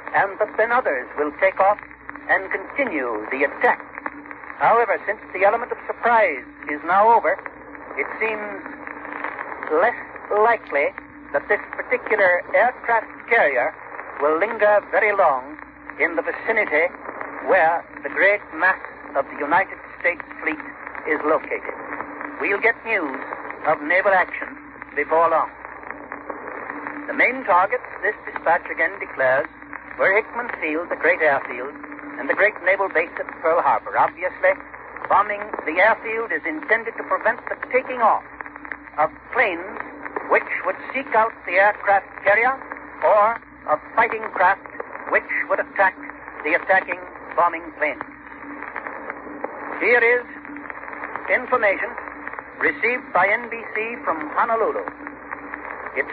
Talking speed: 125 wpm